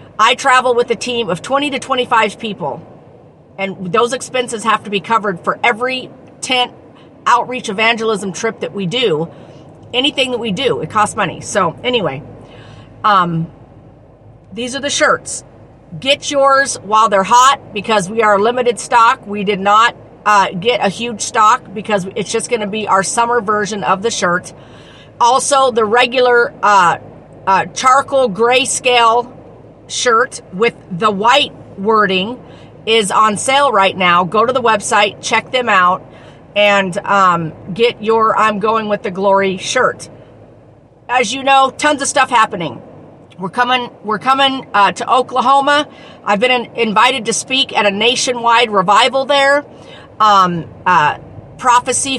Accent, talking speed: American, 155 wpm